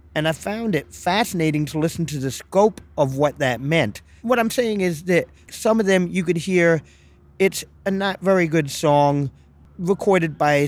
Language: English